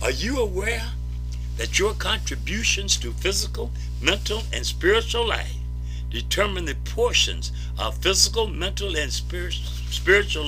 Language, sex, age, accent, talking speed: English, male, 60-79, American, 115 wpm